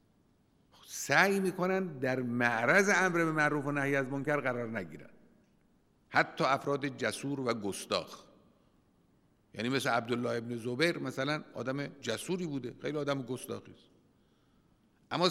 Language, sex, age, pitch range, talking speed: Persian, male, 50-69, 120-155 Hz, 120 wpm